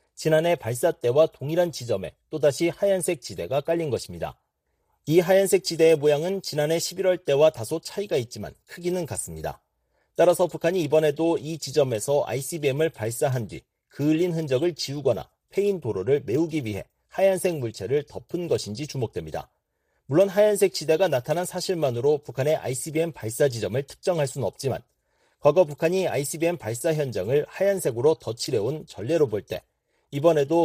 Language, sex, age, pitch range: Korean, male, 40-59, 135-180 Hz